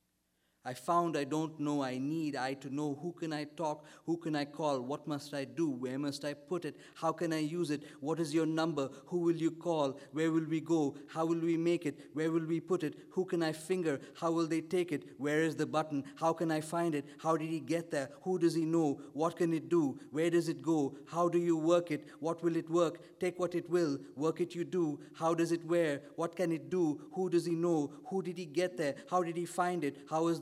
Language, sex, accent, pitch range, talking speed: English, male, Indian, 145-170 Hz, 255 wpm